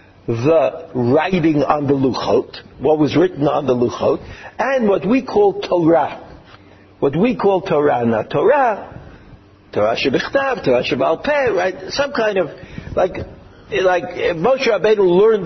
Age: 60-79